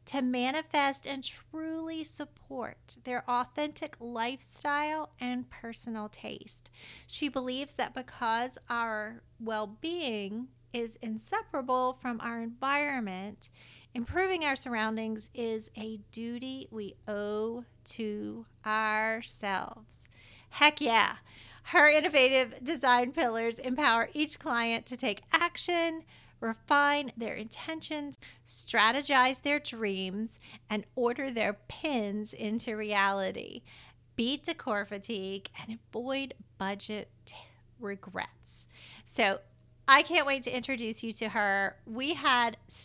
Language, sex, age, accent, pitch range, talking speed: English, female, 40-59, American, 215-275 Hz, 105 wpm